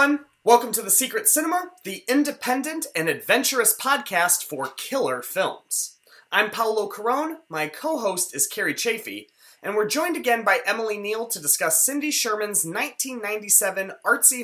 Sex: male